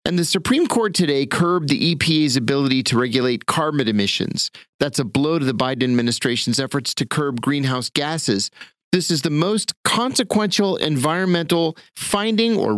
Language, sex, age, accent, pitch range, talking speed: English, male, 40-59, American, 135-180 Hz, 155 wpm